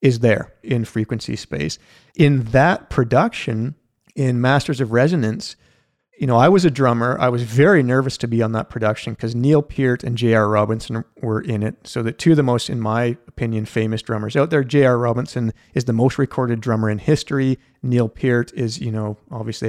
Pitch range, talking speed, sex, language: 115-145 Hz, 195 wpm, male, English